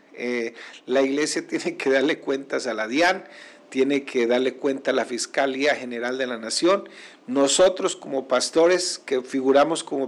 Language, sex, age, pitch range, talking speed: Spanish, male, 50-69, 135-180 Hz, 160 wpm